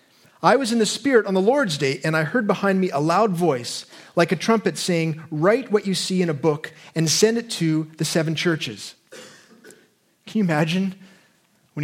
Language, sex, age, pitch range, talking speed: English, male, 30-49, 145-190 Hz, 200 wpm